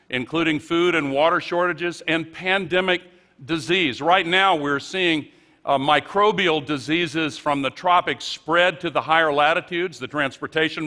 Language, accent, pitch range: Chinese, American, 155-190 Hz